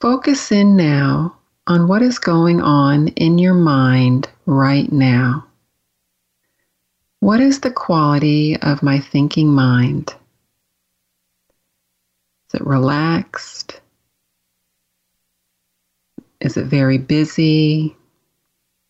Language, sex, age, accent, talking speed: English, female, 40-59, American, 90 wpm